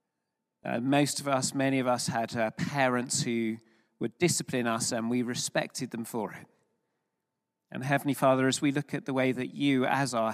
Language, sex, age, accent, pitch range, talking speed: English, male, 40-59, British, 130-185 Hz, 190 wpm